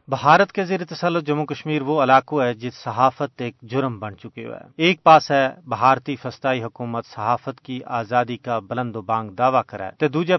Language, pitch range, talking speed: Urdu, 120-150 Hz, 190 wpm